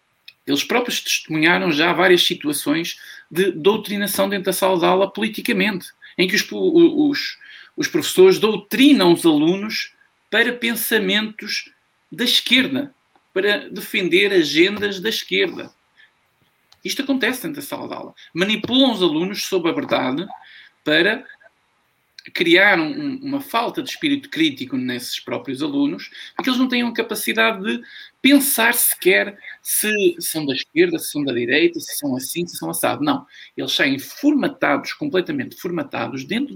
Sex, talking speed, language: male, 145 wpm, Portuguese